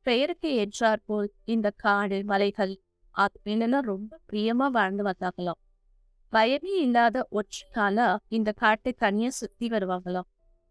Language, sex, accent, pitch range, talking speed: Tamil, female, native, 200-250 Hz, 110 wpm